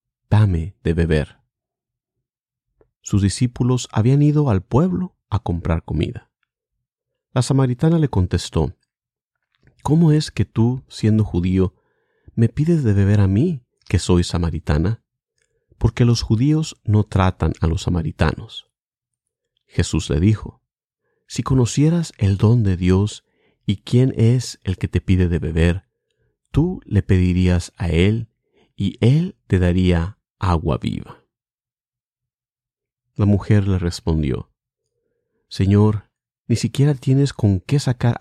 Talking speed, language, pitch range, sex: 125 wpm, English, 90-125 Hz, male